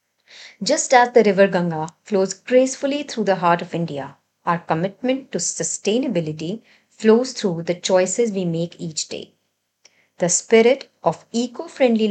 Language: English